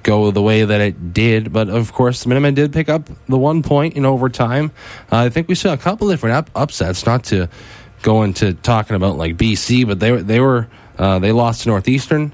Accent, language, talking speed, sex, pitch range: American, English, 230 wpm, male, 105-135 Hz